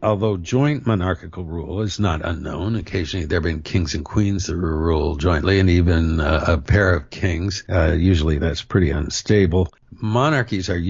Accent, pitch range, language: American, 80-100 Hz, English